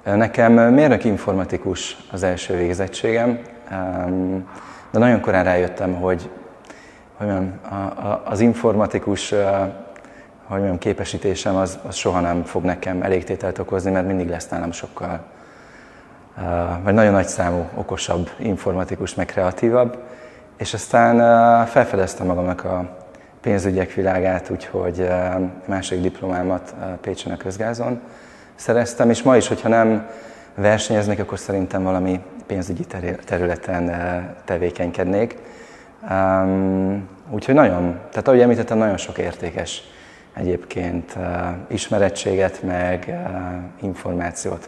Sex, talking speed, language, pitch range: male, 100 wpm, Hungarian, 90-105 Hz